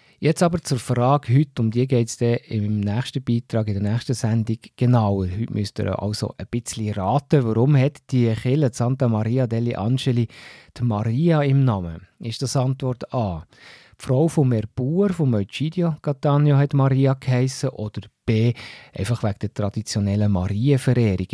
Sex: male